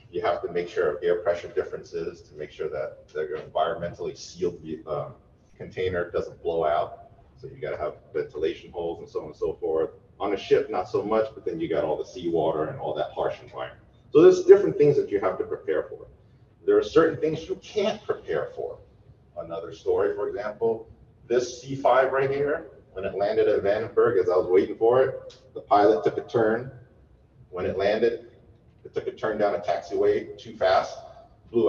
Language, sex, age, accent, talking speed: English, male, 30-49, American, 200 wpm